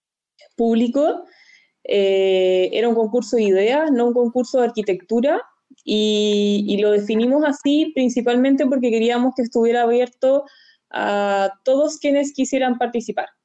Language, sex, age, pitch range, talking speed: Spanish, female, 20-39, 205-250 Hz, 125 wpm